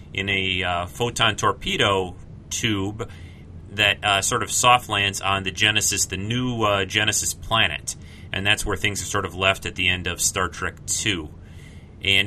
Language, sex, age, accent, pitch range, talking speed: English, male, 30-49, American, 90-110 Hz, 175 wpm